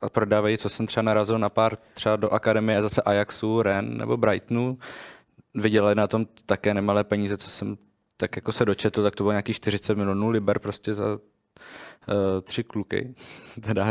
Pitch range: 105-125 Hz